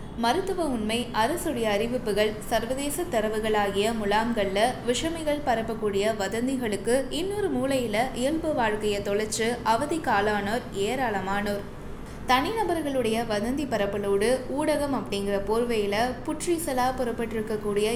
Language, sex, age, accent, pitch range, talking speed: Tamil, female, 20-39, native, 210-260 Hz, 85 wpm